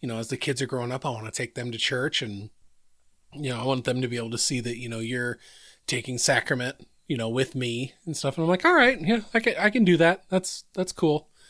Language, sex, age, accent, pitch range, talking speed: English, male, 30-49, American, 120-145 Hz, 275 wpm